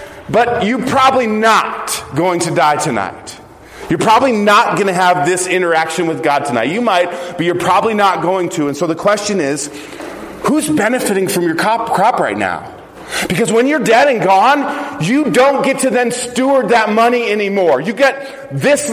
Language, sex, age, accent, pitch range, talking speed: English, male, 40-59, American, 150-245 Hz, 180 wpm